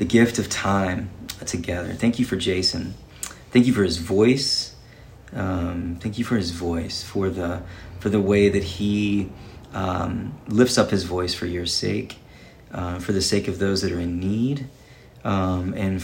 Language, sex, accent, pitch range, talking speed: English, male, American, 90-115 Hz, 175 wpm